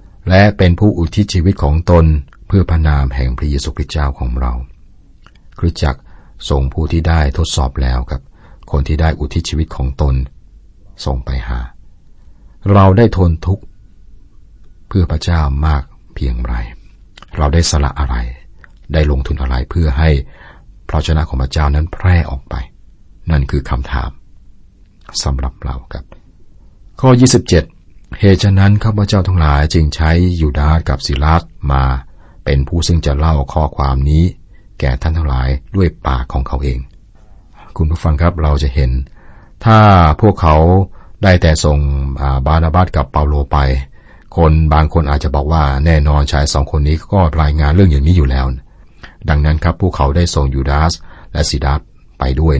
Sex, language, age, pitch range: male, Thai, 60-79, 70-90 Hz